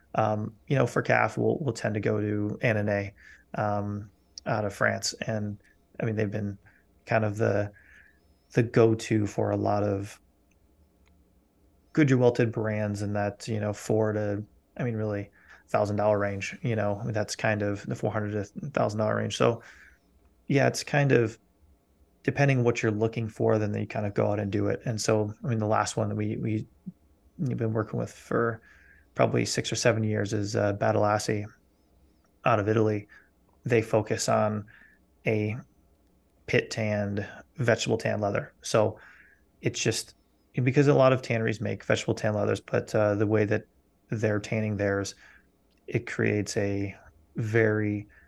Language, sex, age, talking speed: English, male, 20-39, 165 wpm